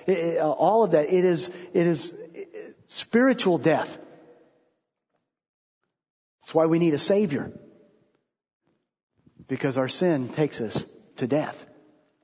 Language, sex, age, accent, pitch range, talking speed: English, male, 40-59, American, 170-245 Hz, 130 wpm